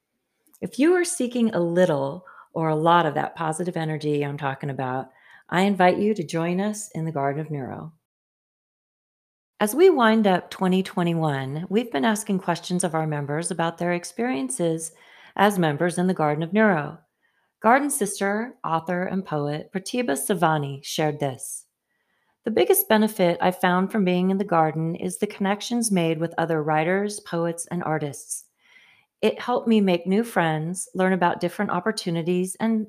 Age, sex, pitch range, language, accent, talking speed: 40-59, female, 160-205 Hz, English, American, 160 wpm